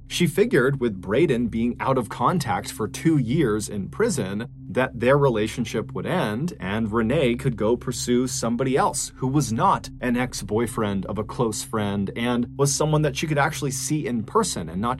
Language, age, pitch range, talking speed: English, 30-49, 110-145 Hz, 185 wpm